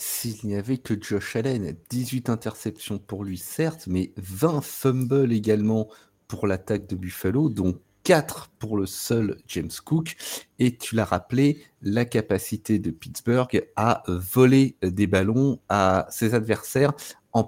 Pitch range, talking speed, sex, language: 105-140 Hz, 145 wpm, male, French